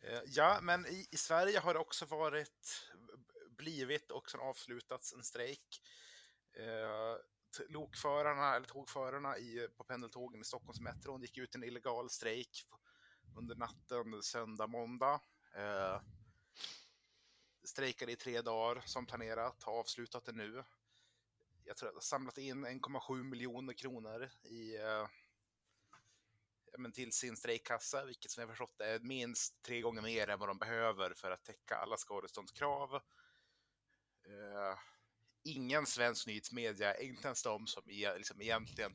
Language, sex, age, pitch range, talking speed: Swedish, male, 30-49, 110-135 Hz, 135 wpm